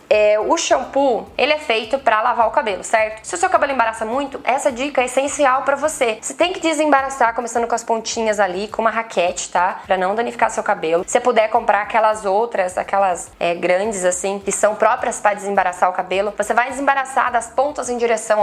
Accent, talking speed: Brazilian, 210 wpm